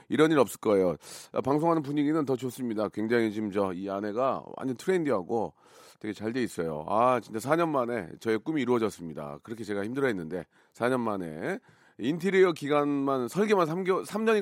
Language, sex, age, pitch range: Korean, male, 40-59, 105-150 Hz